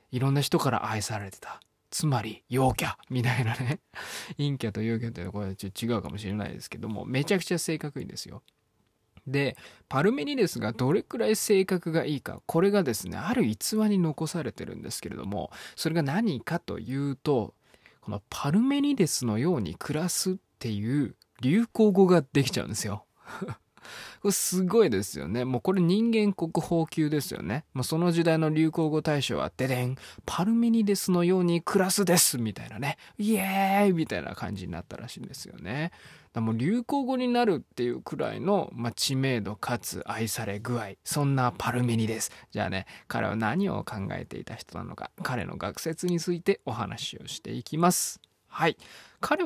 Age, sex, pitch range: 20-39, male, 115-175 Hz